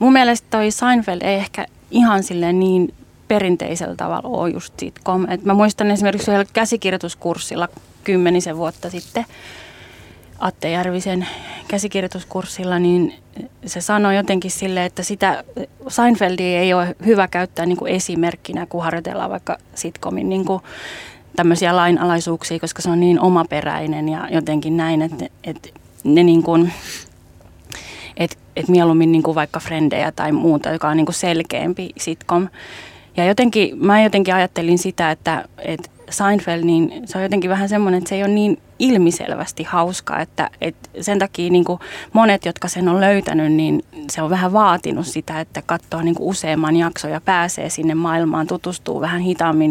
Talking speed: 140 wpm